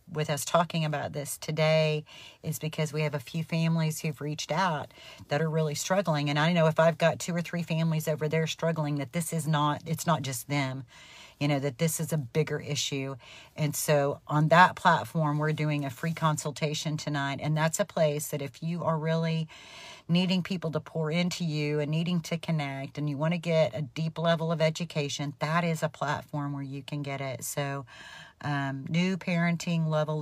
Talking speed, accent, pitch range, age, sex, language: 195 wpm, American, 145-160 Hz, 40-59, female, English